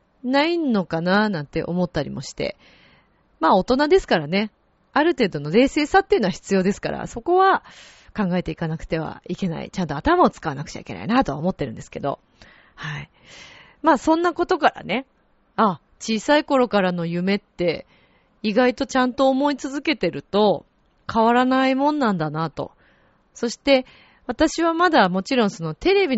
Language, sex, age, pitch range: Japanese, female, 30-49, 175-265 Hz